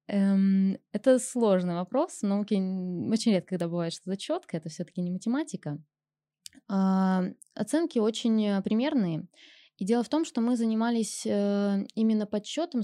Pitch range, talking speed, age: 180-240 Hz, 120 wpm, 20-39